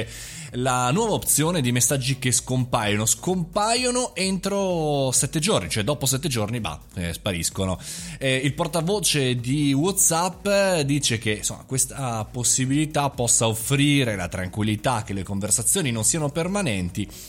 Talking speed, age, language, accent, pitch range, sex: 130 wpm, 20-39, Italian, native, 105-150 Hz, male